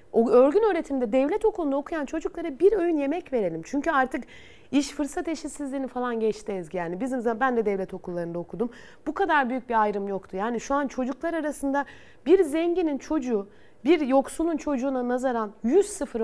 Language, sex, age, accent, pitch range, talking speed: Turkish, female, 30-49, native, 220-305 Hz, 165 wpm